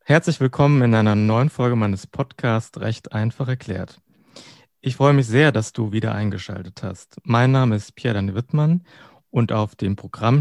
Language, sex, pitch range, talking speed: German, male, 110-135 Hz, 175 wpm